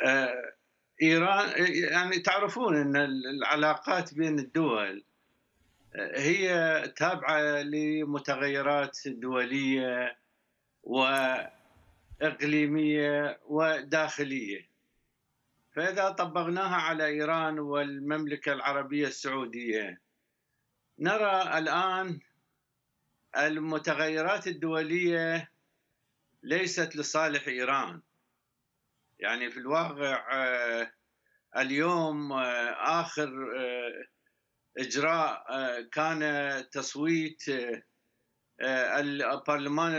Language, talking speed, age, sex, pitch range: Arabic, 55 wpm, 50-69, male, 140-165 Hz